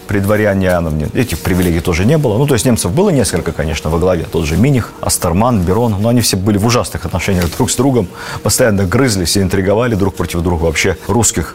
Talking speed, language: 210 wpm, Russian